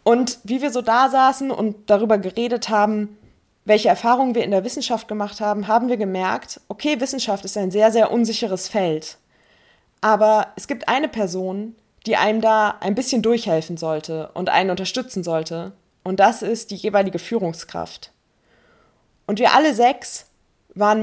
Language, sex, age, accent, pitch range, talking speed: German, female, 20-39, German, 180-225 Hz, 160 wpm